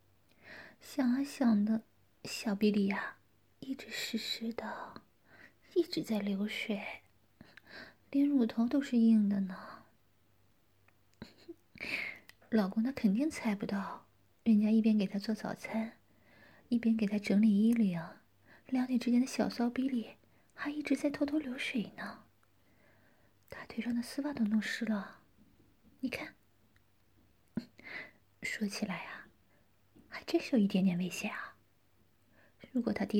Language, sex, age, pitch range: Chinese, female, 30-49, 195-245 Hz